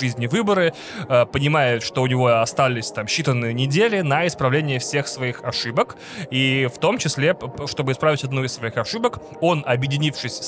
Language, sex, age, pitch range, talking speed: Russian, male, 20-39, 125-160 Hz, 155 wpm